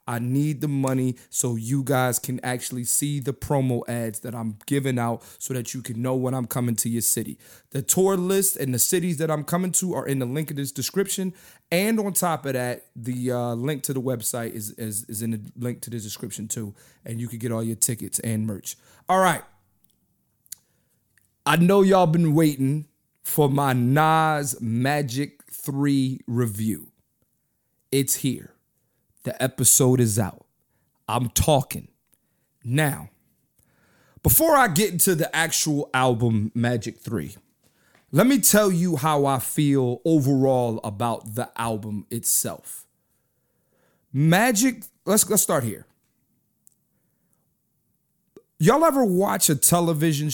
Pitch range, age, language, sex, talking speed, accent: 120-155 Hz, 30-49, English, male, 155 wpm, American